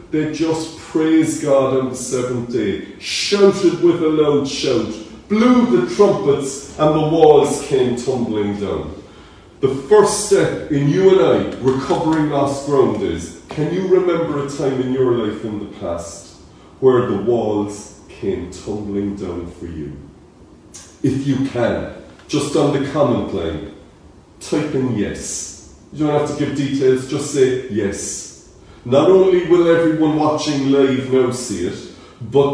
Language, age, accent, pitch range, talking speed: English, 40-59, British, 115-160 Hz, 150 wpm